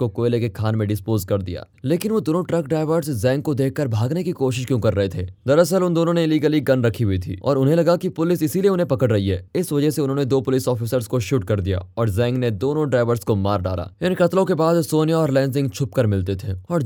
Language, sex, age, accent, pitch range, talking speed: Hindi, male, 20-39, native, 110-160 Hz, 250 wpm